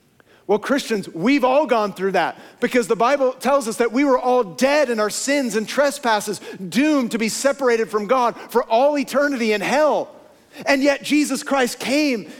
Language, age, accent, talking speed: English, 40-59, American, 185 wpm